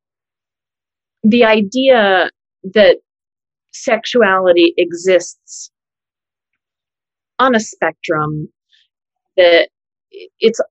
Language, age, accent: English, 30-49, American